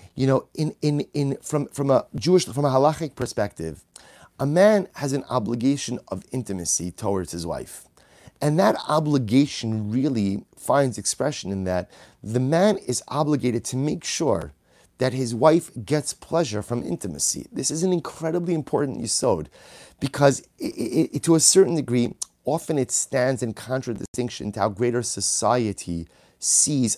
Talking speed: 155 wpm